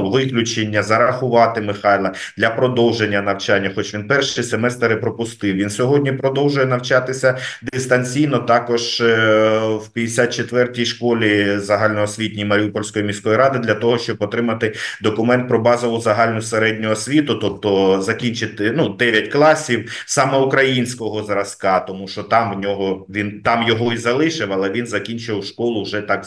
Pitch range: 105-130 Hz